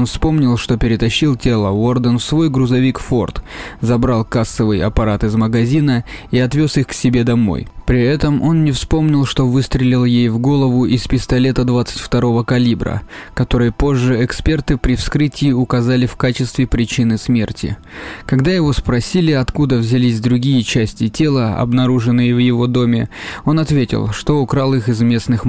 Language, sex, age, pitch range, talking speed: Russian, male, 20-39, 120-140 Hz, 150 wpm